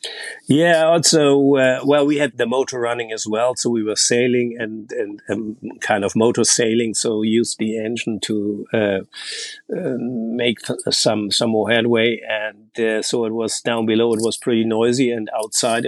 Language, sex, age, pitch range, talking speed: English, male, 50-69, 110-130 Hz, 180 wpm